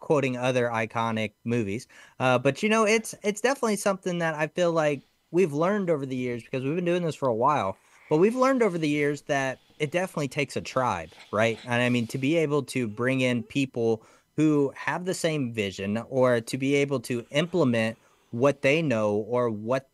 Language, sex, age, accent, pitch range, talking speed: English, male, 20-39, American, 115-150 Hz, 205 wpm